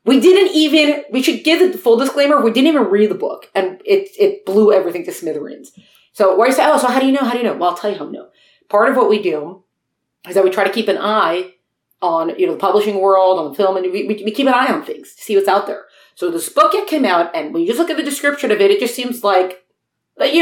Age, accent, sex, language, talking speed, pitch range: 30-49, American, female, English, 290 wpm, 200-300 Hz